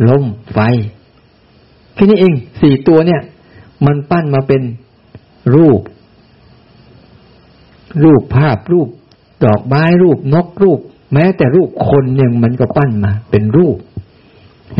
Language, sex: Thai, male